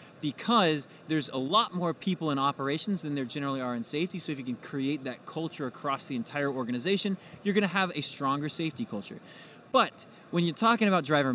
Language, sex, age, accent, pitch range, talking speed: English, male, 20-39, American, 140-180 Hz, 205 wpm